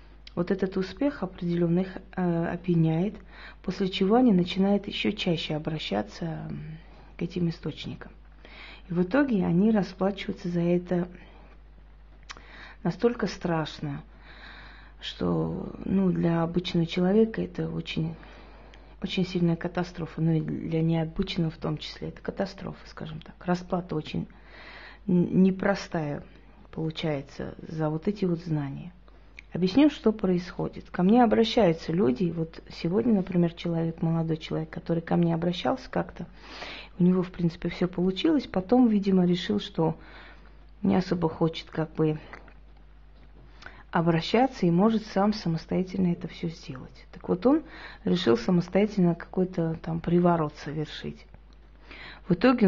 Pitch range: 165-195 Hz